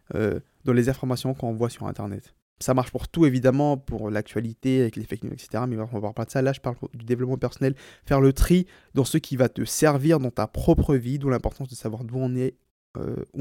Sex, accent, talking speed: male, French, 235 wpm